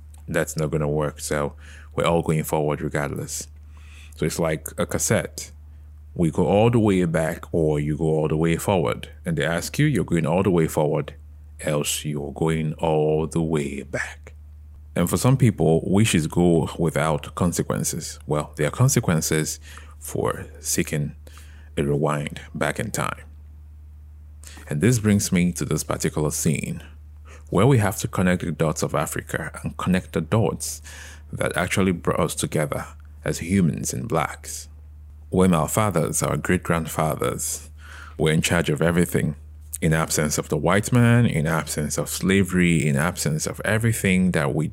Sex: male